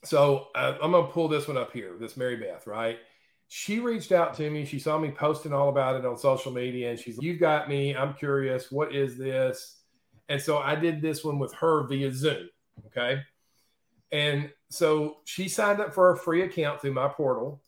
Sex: male